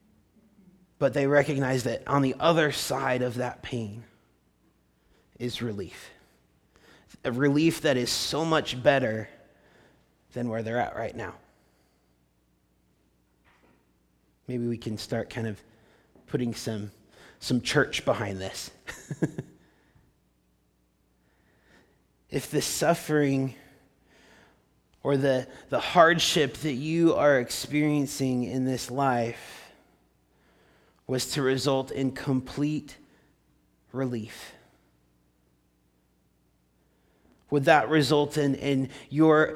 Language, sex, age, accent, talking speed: English, male, 30-49, American, 95 wpm